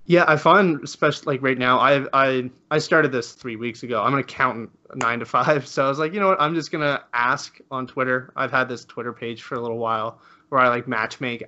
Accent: American